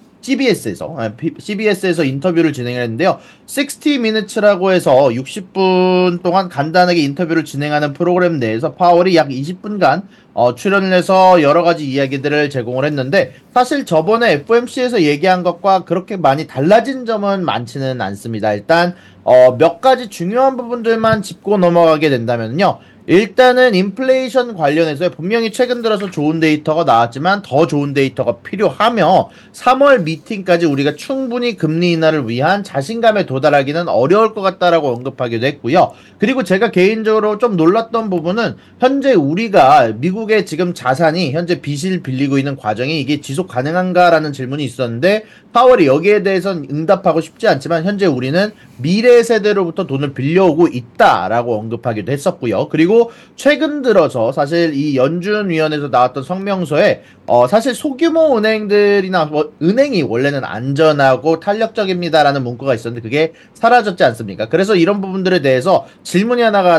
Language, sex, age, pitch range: Korean, male, 30-49, 145-210 Hz